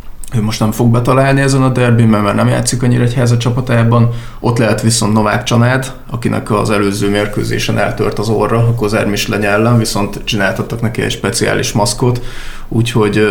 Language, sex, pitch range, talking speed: Hungarian, male, 105-120 Hz, 165 wpm